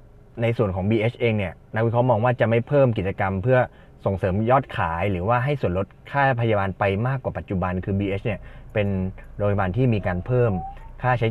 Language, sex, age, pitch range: Thai, male, 20-39, 105-130 Hz